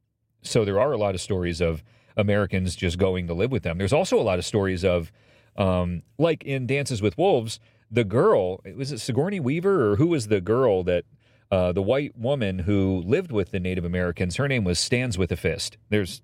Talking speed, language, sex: 215 wpm, English, male